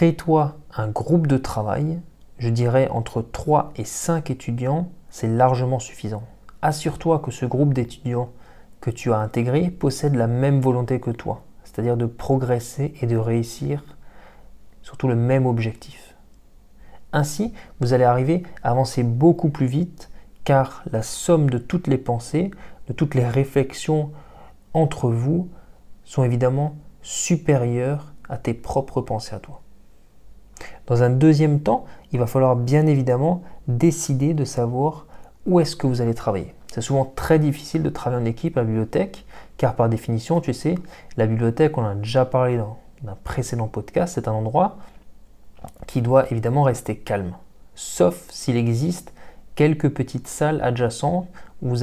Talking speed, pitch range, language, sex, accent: 155 wpm, 120-150 Hz, French, male, French